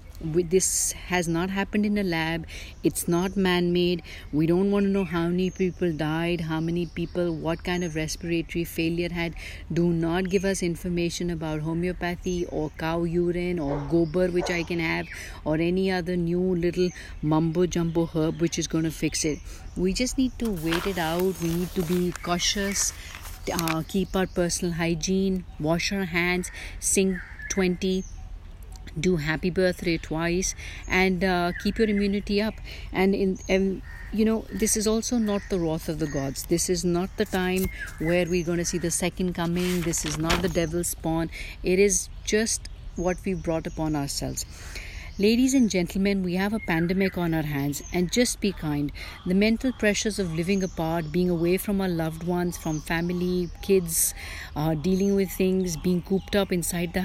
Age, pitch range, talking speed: 50-69, 165-190 Hz, 180 wpm